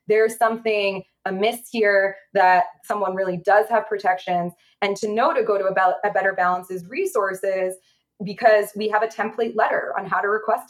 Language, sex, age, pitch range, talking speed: English, female, 20-39, 185-230 Hz, 180 wpm